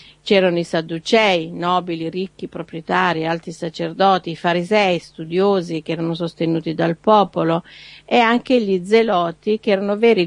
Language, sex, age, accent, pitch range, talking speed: Italian, female, 50-69, native, 160-200 Hz, 130 wpm